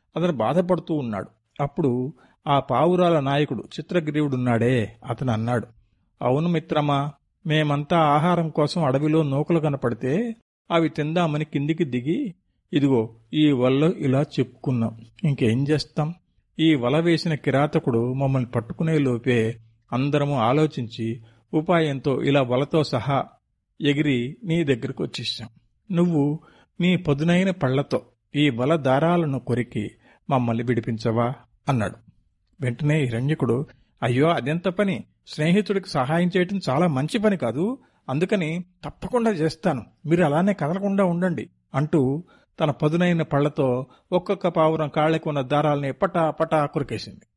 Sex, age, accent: male, 50-69, native